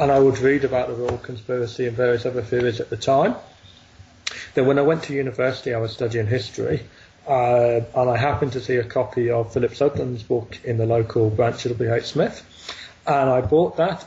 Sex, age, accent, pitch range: male, 40-59, British, 120-135 Hz